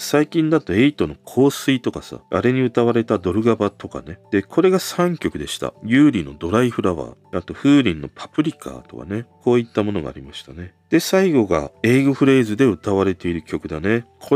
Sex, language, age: male, Japanese, 40-59